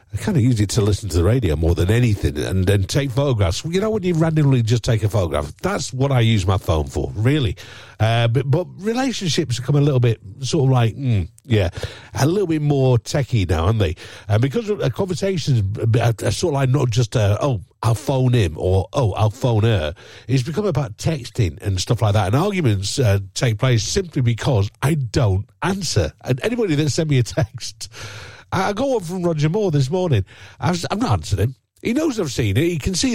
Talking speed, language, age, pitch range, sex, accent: 225 wpm, English, 50-69, 105-150 Hz, male, British